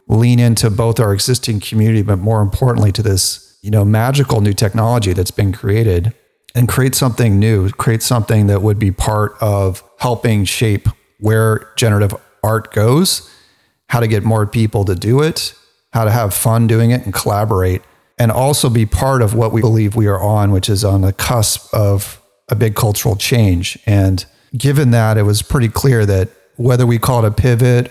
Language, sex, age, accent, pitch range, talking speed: English, male, 40-59, American, 100-115 Hz, 185 wpm